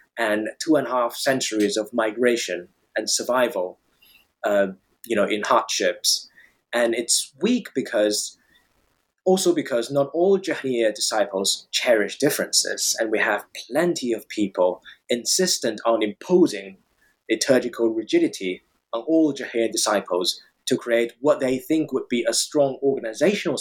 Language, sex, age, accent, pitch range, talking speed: English, male, 20-39, British, 105-140 Hz, 130 wpm